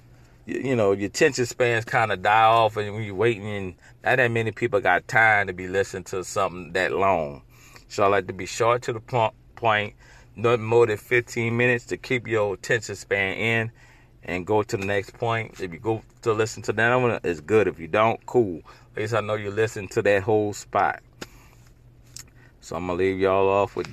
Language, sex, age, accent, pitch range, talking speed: English, male, 30-49, American, 100-120 Hz, 215 wpm